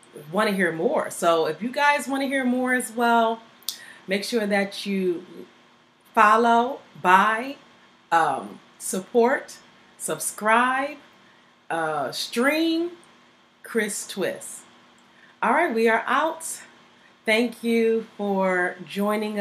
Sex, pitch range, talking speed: female, 175-205 Hz, 110 wpm